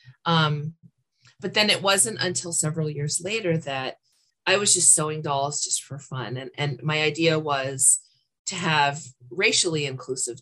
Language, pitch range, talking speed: English, 135-175 Hz, 155 wpm